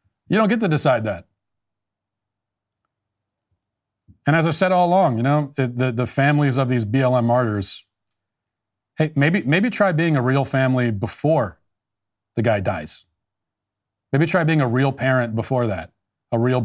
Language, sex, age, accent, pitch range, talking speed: English, male, 40-59, American, 100-135 Hz, 155 wpm